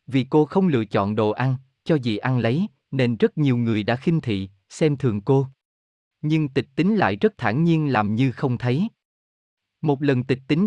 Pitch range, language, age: 115-155 Hz, Vietnamese, 20-39